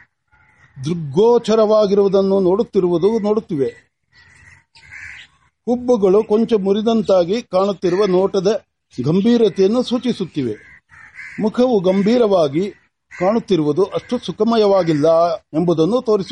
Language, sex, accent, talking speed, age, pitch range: Marathi, male, native, 40 wpm, 60-79, 180-225 Hz